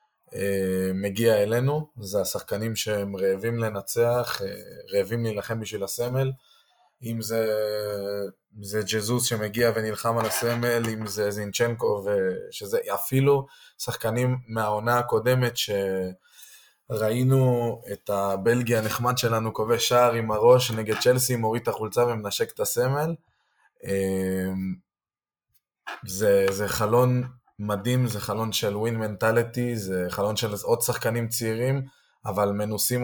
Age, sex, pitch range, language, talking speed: 20-39, male, 100-120 Hz, Hebrew, 110 wpm